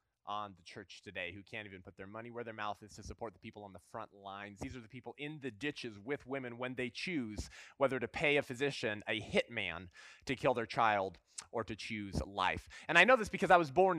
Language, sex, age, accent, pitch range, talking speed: English, male, 20-39, American, 110-140 Hz, 245 wpm